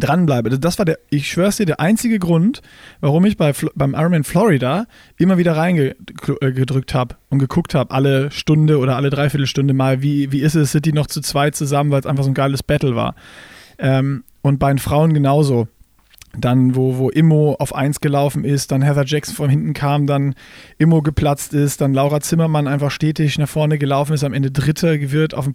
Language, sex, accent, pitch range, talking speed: German, male, German, 135-155 Hz, 200 wpm